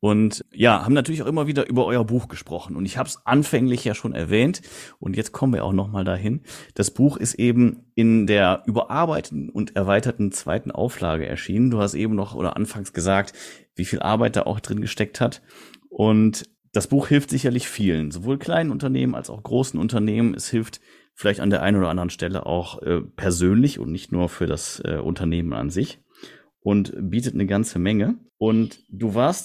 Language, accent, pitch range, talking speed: German, German, 95-120 Hz, 195 wpm